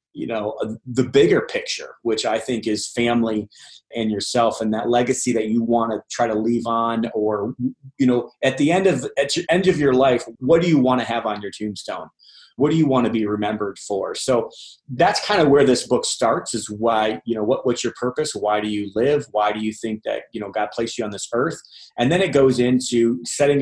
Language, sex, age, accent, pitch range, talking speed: English, male, 30-49, American, 110-140 Hz, 235 wpm